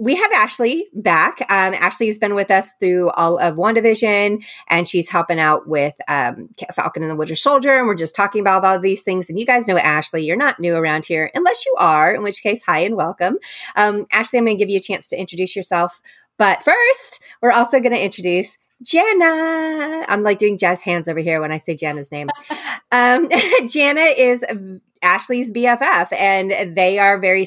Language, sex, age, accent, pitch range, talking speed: English, female, 30-49, American, 170-245 Hz, 205 wpm